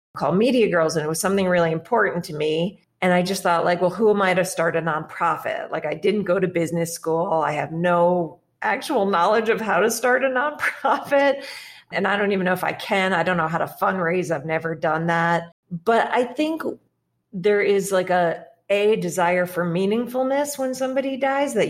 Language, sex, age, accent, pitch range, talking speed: English, female, 40-59, American, 170-220 Hz, 205 wpm